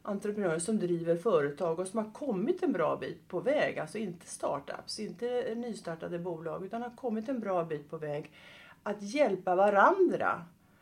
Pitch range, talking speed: 175-235 Hz, 165 wpm